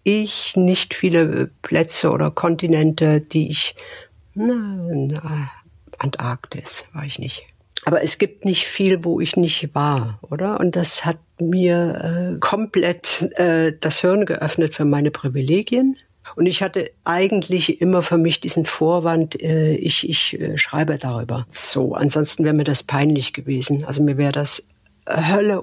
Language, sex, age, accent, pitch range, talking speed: German, female, 60-79, German, 150-180 Hz, 150 wpm